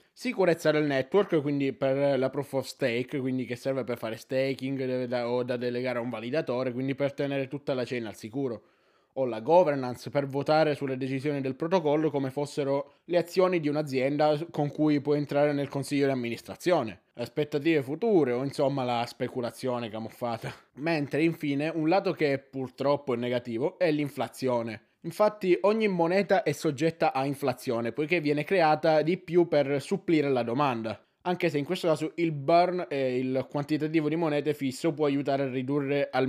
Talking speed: 170 wpm